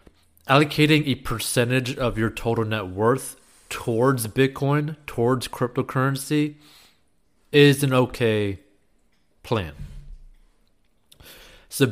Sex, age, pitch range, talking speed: male, 20-39, 110-145 Hz, 85 wpm